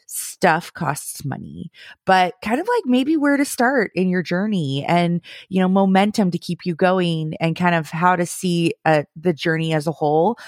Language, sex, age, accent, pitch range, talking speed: English, female, 30-49, American, 170-220 Hz, 195 wpm